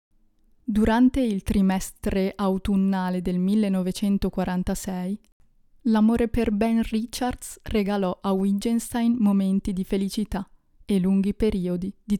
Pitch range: 190-220 Hz